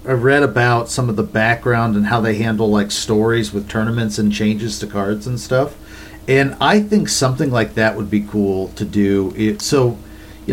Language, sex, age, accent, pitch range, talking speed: English, male, 40-59, American, 105-125 Hz, 200 wpm